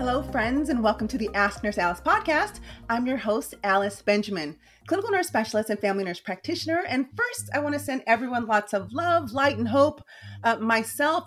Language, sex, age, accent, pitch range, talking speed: English, female, 30-49, American, 195-250 Hz, 195 wpm